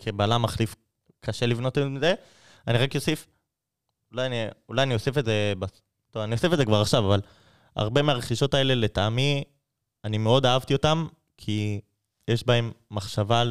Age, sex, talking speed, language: 20-39, male, 150 wpm, Hebrew